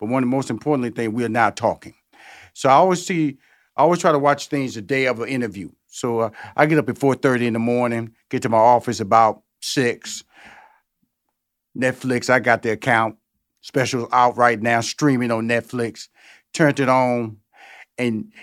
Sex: male